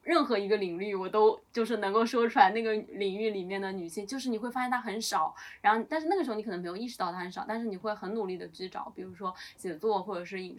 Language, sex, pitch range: Chinese, female, 185-215 Hz